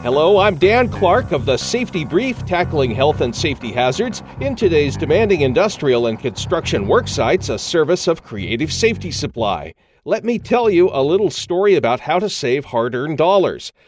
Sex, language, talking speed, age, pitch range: male, English, 175 wpm, 40-59, 140-205 Hz